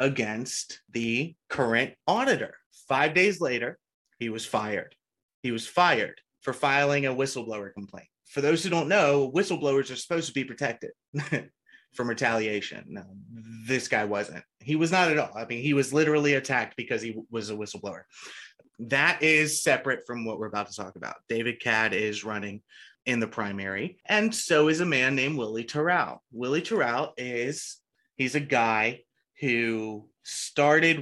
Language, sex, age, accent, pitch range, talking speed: English, male, 30-49, American, 115-145 Hz, 165 wpm